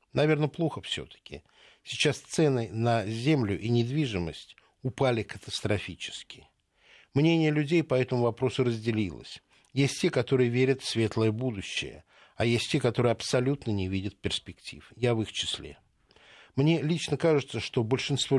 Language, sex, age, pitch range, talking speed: Russian, male, 60-79, 110-140 Hz, 135 wpm